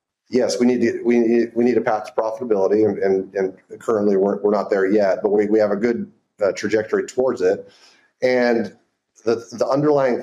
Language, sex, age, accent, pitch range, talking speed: English, male, 30-49, American, 105-135 Hz, 205 wpm